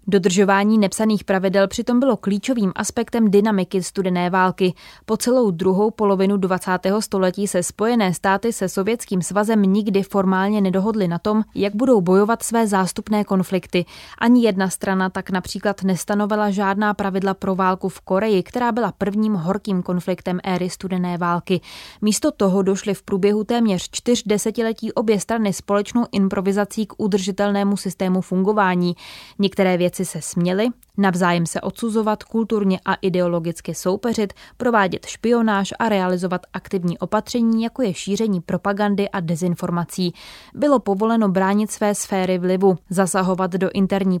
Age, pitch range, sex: 20-39, 185-215 Hz, female